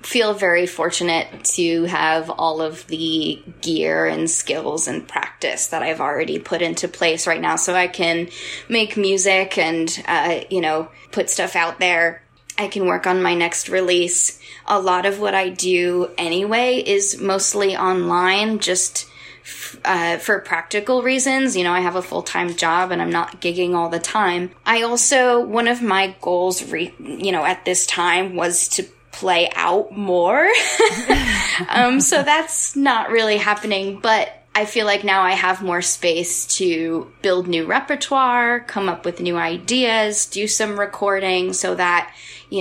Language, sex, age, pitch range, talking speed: English, female, 10-29, 170-205 Hz, 165 wpm